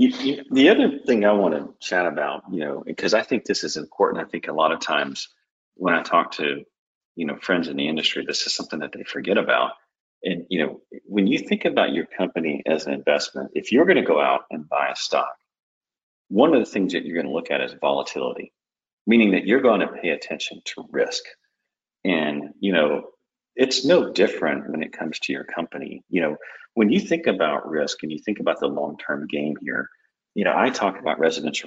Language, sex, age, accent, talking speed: English, male, 40-59, American, 220 wpm